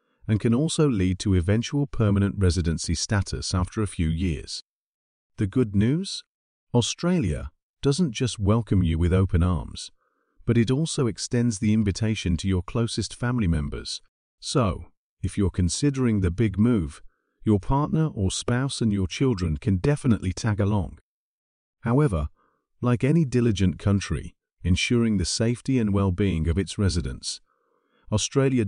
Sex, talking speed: male, 140 wpm